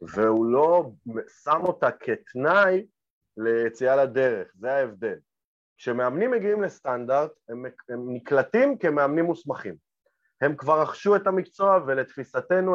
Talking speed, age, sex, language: 110 wpm, 30-49, male, Hebrew